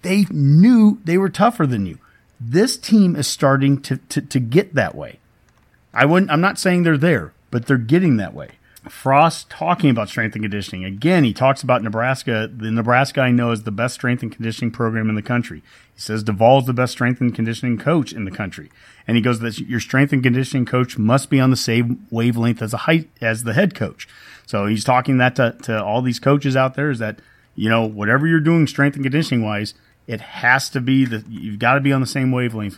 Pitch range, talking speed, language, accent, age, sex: 110-135 Hz, 225 wpm, English, American, 40-59, male